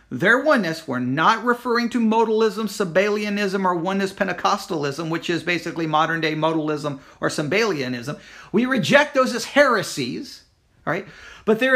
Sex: male